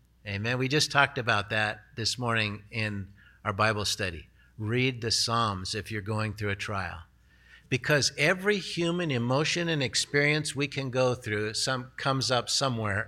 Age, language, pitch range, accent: 50-69, English, 105-145 Hz, American